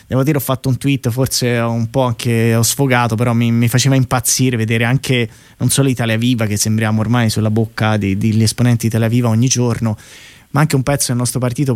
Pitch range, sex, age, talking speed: 115-145 Hz, male, 20-39, 215 wpm